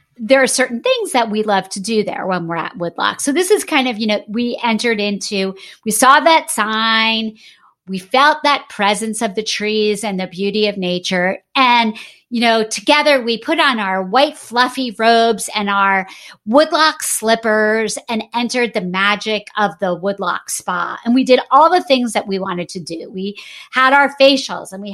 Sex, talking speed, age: female, 190 wpm, 40-59